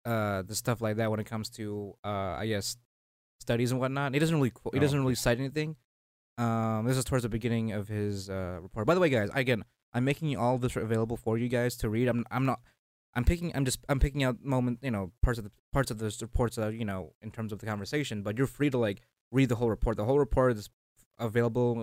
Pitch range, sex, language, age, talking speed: 105-125 Hz, male, English, 20-39, 255 wpm